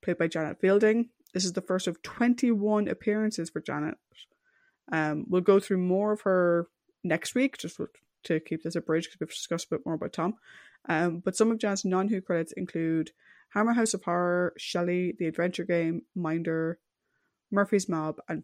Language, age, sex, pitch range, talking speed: English, 20-39, female, 170-210 Hz, 180 wpm